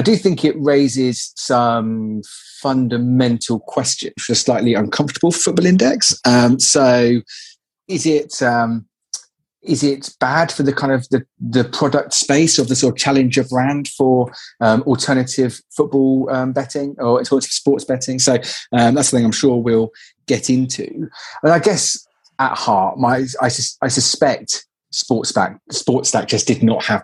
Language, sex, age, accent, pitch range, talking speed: English, male, 30-49, British, 115-135 Hz, 155 wpm